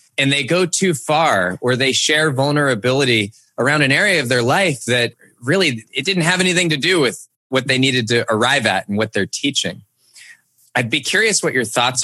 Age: 20-39